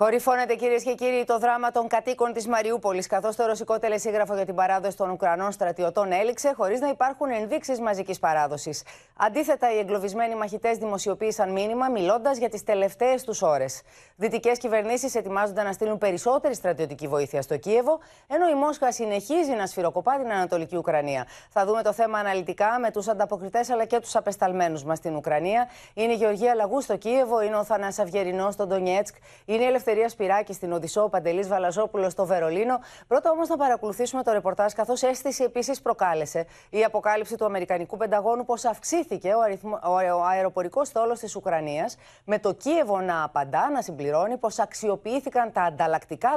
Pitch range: 185-240 Hz